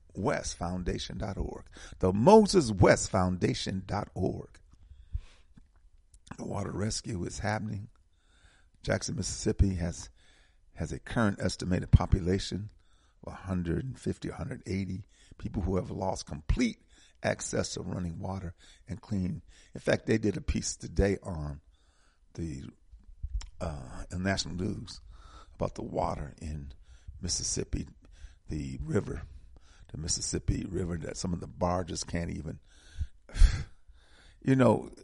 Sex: male